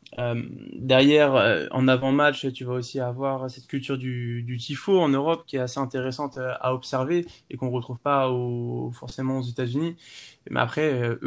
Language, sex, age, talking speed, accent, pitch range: French, male, 20-39, 185 wpm, French, 125-145 Hz